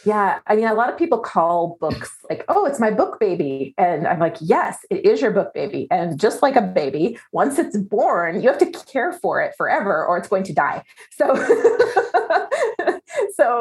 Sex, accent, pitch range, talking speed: female, American, 170-225 Hz, 205 wpm